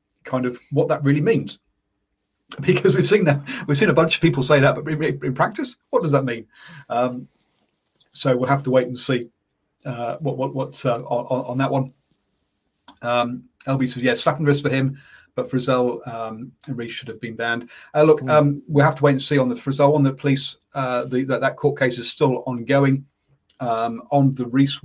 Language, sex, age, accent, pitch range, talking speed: English, male, 40-59, British, 120-140 Hz, 210 wpm